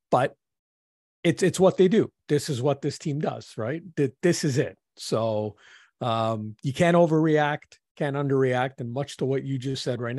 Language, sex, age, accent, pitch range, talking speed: English, male, 40-59, American, 115-145 Hz, 185 wpm